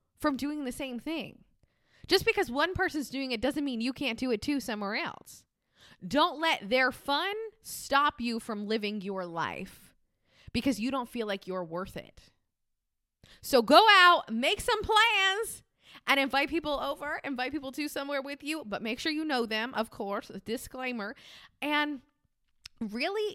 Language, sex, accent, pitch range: English, female, American, 225-300 Hz